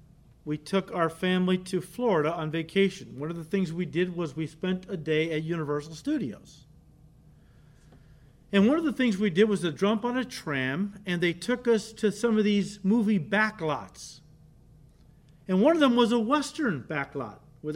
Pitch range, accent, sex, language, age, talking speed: 165-235 Hz, American, male, English, 50-69, 185 wpm